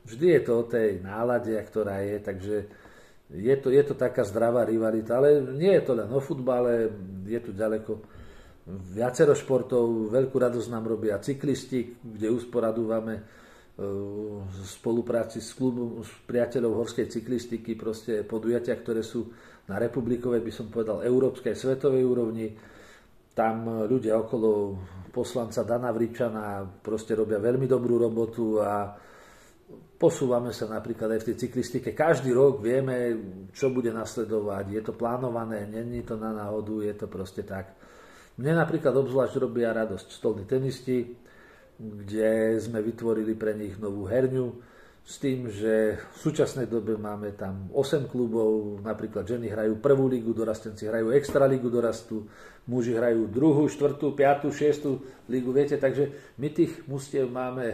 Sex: male